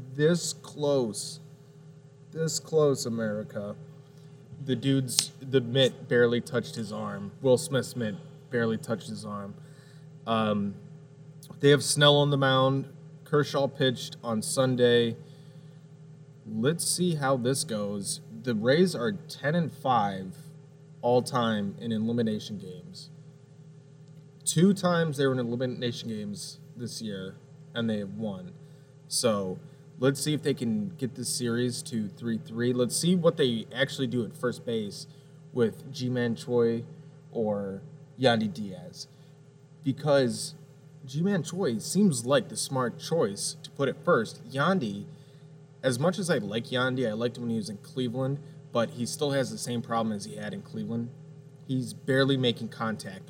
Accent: American